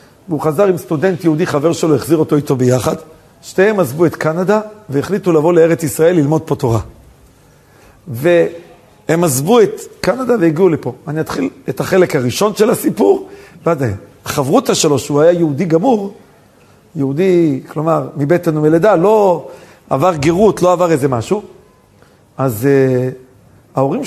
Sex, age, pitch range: male, 50-69, 145-190 Hz